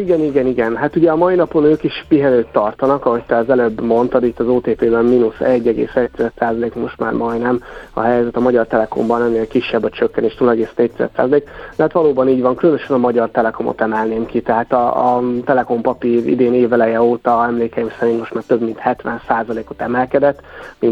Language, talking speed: Hungarian, 180 wpm